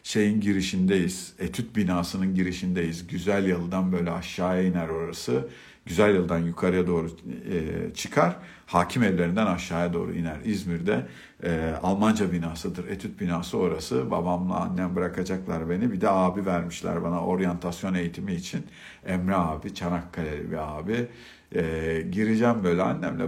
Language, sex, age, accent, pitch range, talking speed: Turkish, male, 50-69, native, 85-105 Hz, 120 wpm